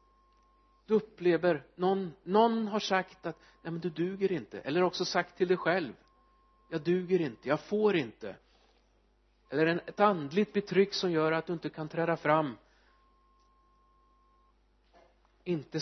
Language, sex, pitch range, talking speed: Swedish, male, 155-220 Hz, 140 wpm